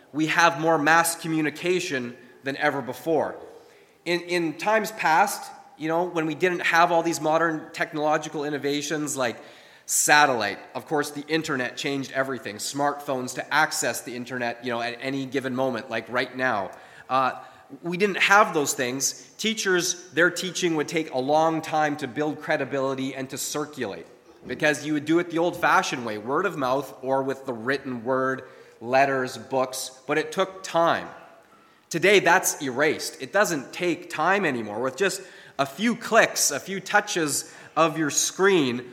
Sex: male